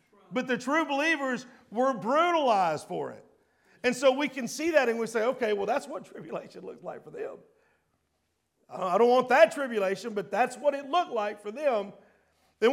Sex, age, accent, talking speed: male, 50-69, American, 190 wpm